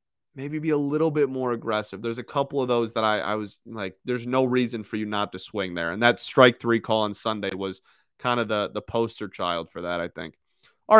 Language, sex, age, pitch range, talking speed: English, male, 30-49, 115-140 Hz, 245 wpm